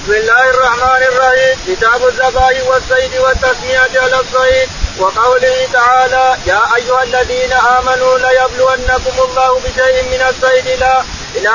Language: Arabic